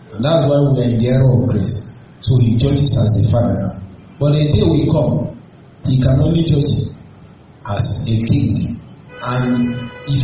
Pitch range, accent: 120-150 Hz, Nigerian